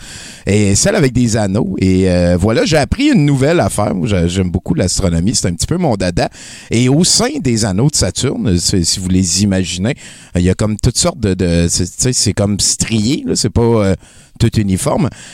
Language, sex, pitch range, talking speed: French, male, 95-120 Hz, 200 wpm